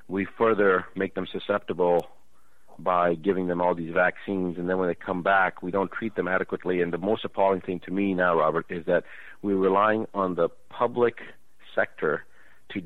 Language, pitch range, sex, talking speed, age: English, 90-110 Hz, male, 185 wpm, 50-69